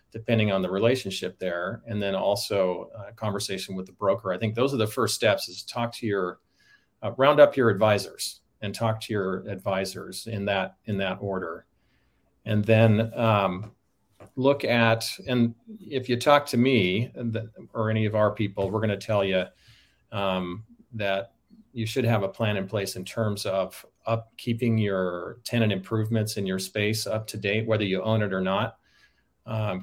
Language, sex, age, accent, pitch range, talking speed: English, male, 40-59, American, 95-115 Hz, 180 wpm